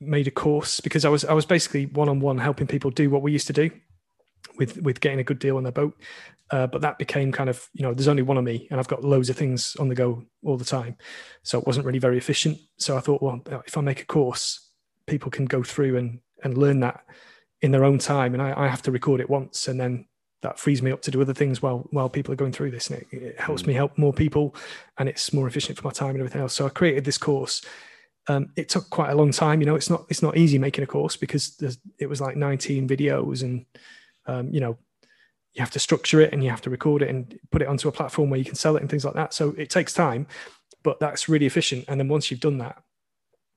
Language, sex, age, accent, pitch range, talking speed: English, male, 30-49, British, 130-150 Hz, 265 wpm